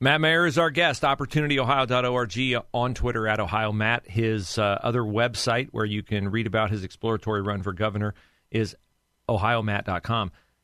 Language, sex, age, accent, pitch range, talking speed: English, male, 40-59, American, 105-140 Hz, 145 wpm